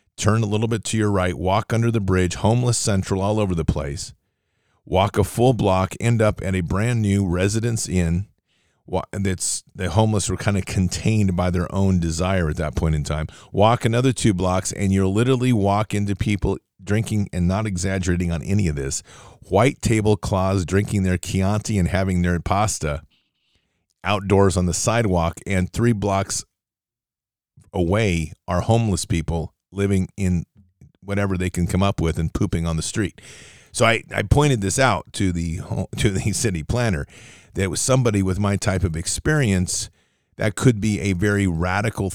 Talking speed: 175 wpm